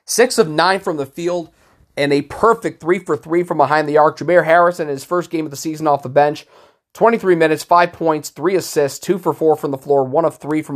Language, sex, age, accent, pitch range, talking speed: English, male, 30-49, American, 145-180 Hz, 245 wpm